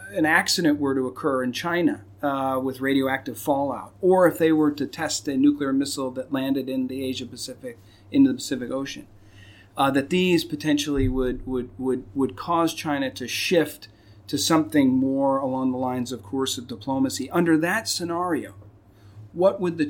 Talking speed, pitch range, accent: 175 wpm, 125-160 Hz, American